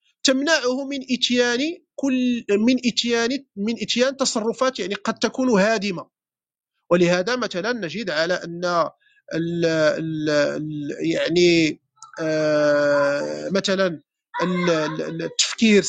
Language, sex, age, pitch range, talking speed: Arabic, male, 40-59, 190-250 Hz, 90 wpm